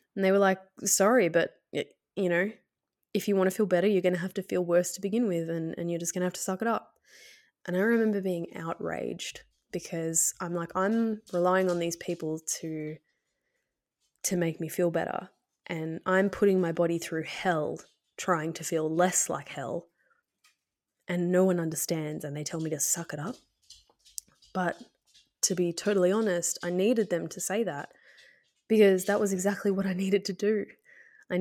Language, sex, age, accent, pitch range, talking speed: English, female, 20-39, Australian, 170-210 Hz, 190 wpm